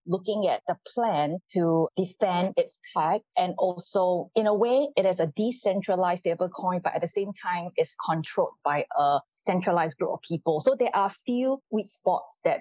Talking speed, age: 185 wpm, 30-49